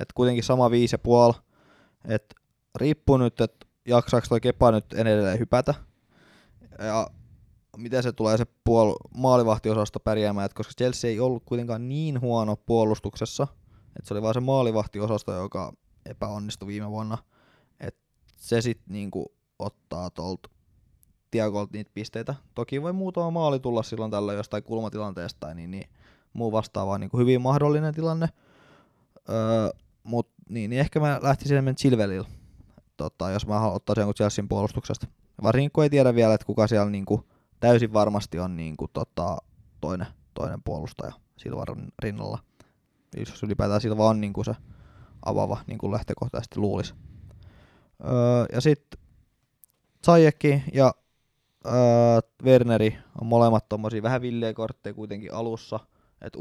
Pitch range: 105-125 Hz